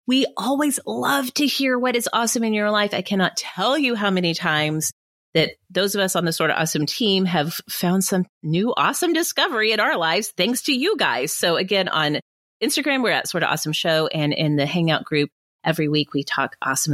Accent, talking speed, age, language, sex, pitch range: American, 215 wpm, 30-49, English, female, 160-250 Hz